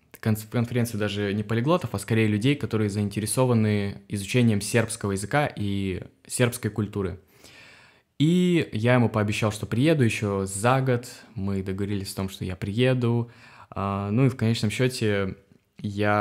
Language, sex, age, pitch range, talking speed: Russian, male, 20-39, 100-120 Hz, 135 wpm